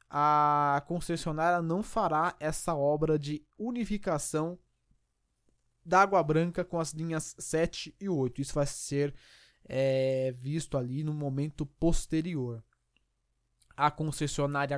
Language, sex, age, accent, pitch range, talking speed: Portuguese, male, 20-39, Brazilian, 140-175 Hz, 115 wpm